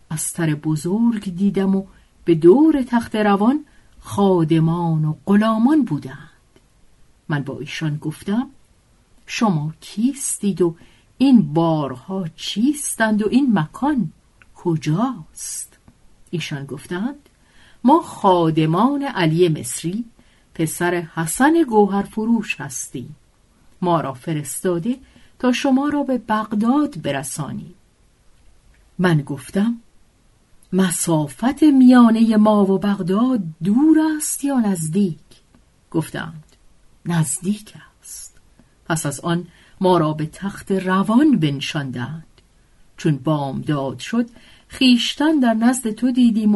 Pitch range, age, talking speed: 160-235 Hz, 50-69, 100 wpm